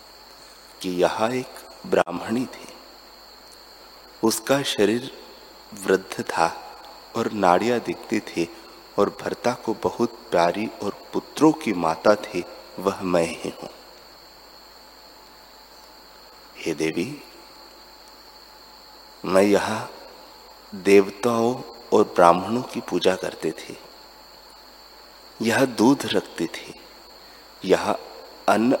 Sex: male